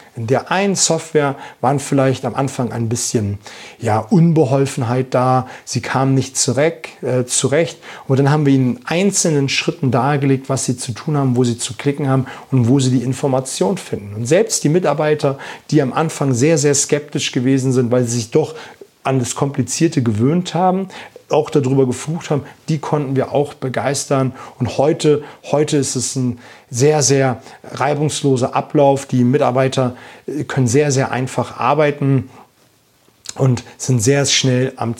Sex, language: male, German